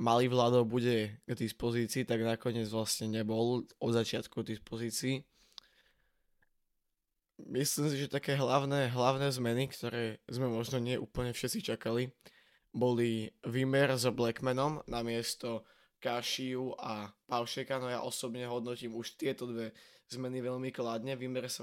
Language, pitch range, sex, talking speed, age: Slovak, 115-135 Hz, male, 130 wpm, 20-39